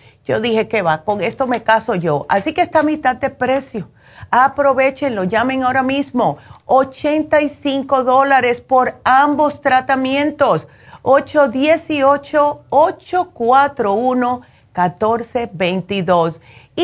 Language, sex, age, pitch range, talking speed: Spanish, female, 40-59, 190-265 Hz, 95 wpm